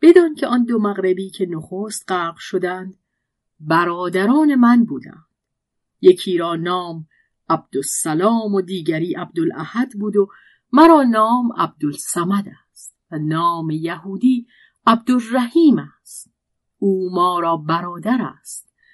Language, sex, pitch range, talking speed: Persian, female, 170-235 Hz, 110 wpm